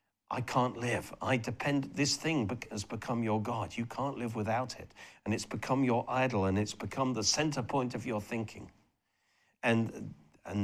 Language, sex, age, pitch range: English, male, 50-69, 100-130 Hz